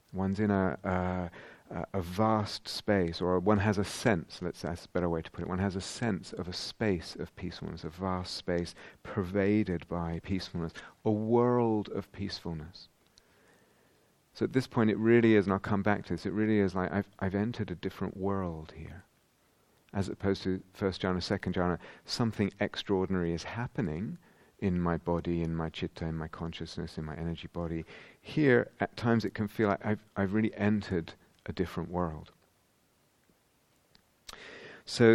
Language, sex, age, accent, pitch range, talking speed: English, male, 40-59, British, 85-105 Hz, 175 wpm